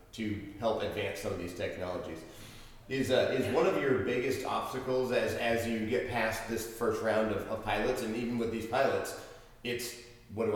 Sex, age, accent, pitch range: male, 30-49, American, 105-125 Hz